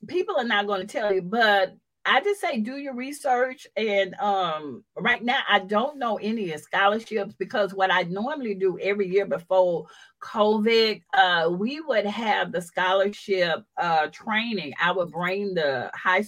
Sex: female